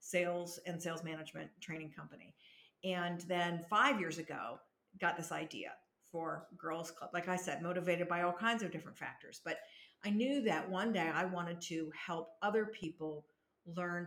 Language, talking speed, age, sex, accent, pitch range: English, 170 wpm, 50-69, female, American, 170-205 Hz